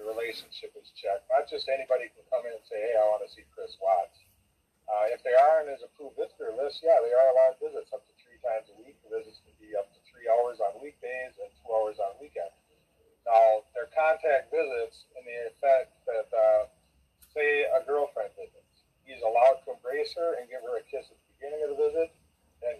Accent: American